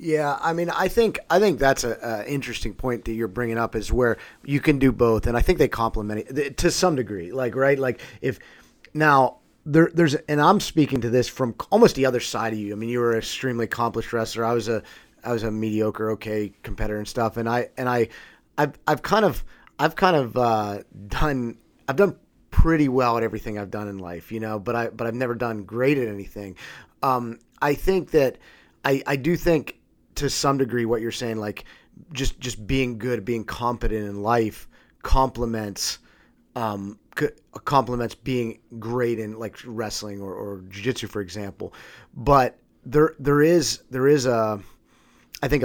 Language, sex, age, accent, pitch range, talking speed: English, male, 30-49, American, 110-135 Hz, 195 wpm